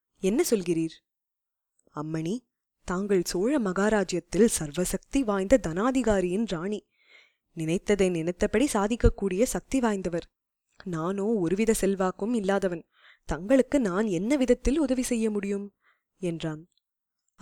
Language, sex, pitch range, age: Tamil, female, 180-225 Hz, 20-39